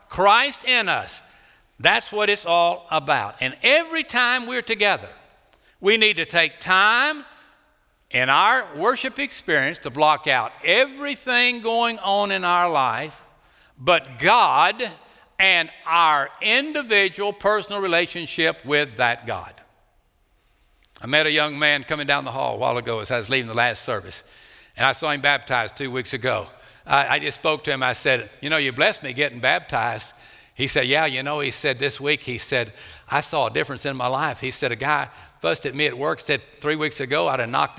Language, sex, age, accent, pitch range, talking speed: English, male, 60-79, American, 125-185 Hz, 185 wpm